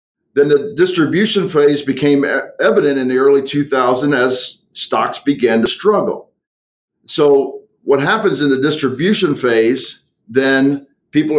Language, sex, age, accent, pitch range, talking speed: English, male, 50-69, American, 125-175 Hz, 125 wpm